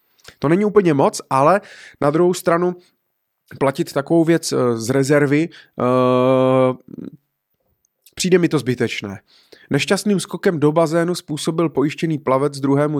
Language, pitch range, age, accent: Czech, 115-145 Hz, 20-39, native